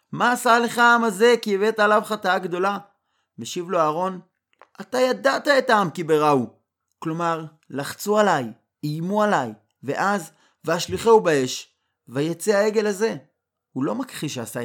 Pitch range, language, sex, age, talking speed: 120-185 Hz, Hebrew, male, 30-49, 145 wpm